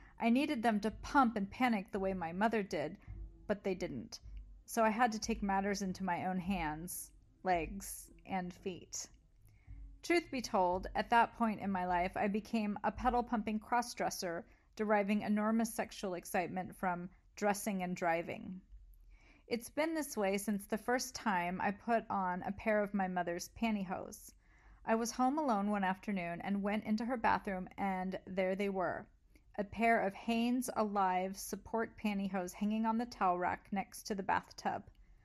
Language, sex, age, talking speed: English, female, 40-59, 165 wpm